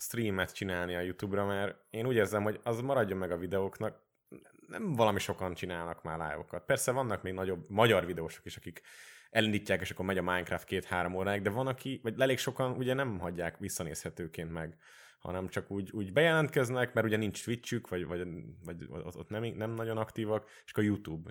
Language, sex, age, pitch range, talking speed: Hungarian, male, 20-39, 90-115 Hz, 190 wpm